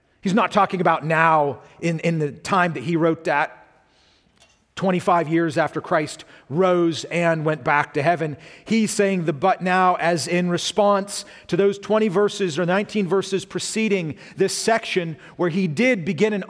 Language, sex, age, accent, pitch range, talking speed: English, male, 40-59, American, 170-210 Hz, 165 wpm